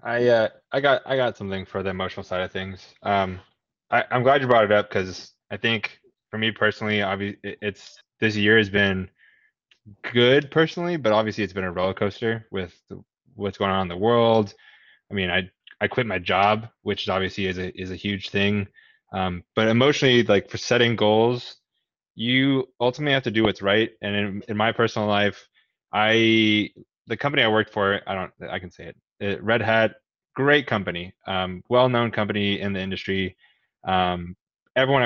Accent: American